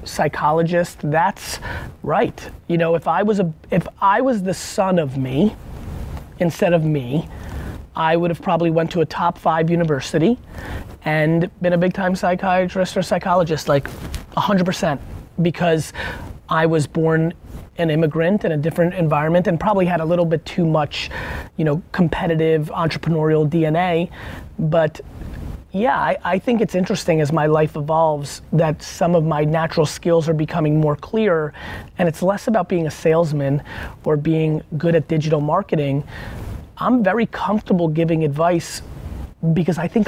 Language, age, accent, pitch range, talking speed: English, 30-49, American, 155-180 Hz, 160 wpm